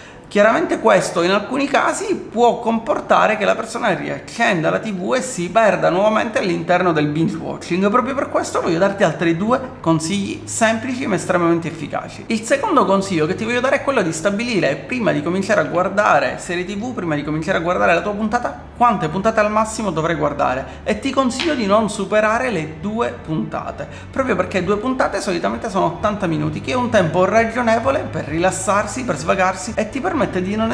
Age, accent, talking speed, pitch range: 30-49, native, 185 wpm, 180-240 Hz